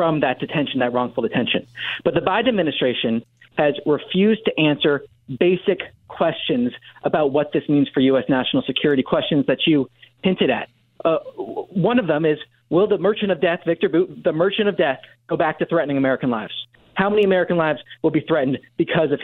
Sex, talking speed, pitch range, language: male, 185 wpm, 140-185 Hz, English